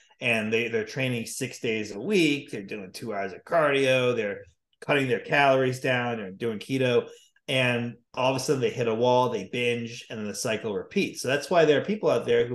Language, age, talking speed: English, 30-49, 225 wpm